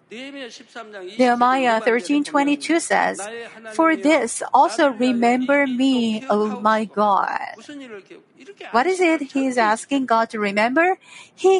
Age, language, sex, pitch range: 40-59, Korean, female, 225-300 Hz